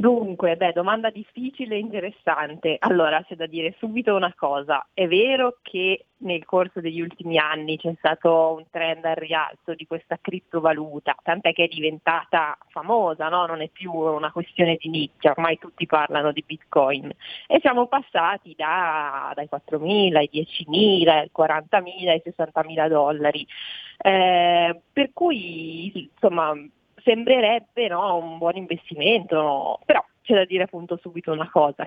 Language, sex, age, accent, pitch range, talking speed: Italian, female, 30-49, native, 160-190 Hz, 155 wpm